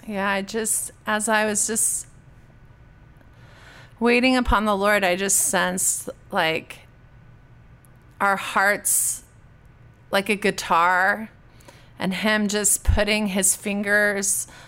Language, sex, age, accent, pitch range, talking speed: English, female, 30-49, American, 135-210 Hz, 105 wpm